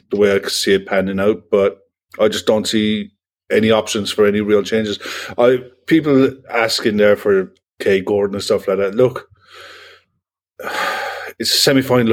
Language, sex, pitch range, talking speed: English, male, 100-135 Hz, 170 wpm